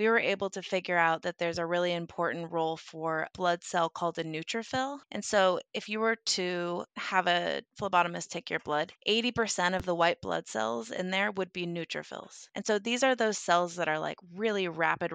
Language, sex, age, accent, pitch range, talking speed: English, female, 20-39, American, 175-210 Hz, 210 wpm